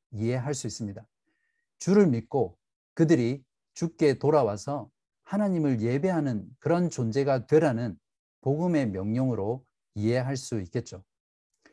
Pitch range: 115-165 Hz